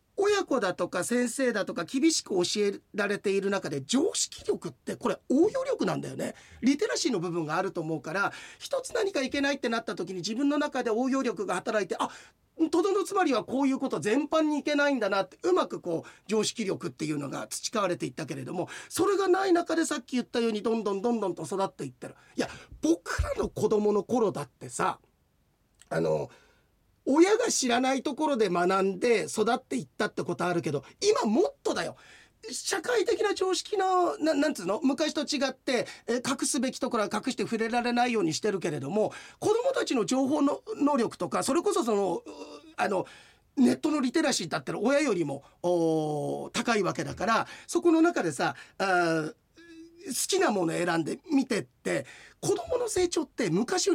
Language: Japanese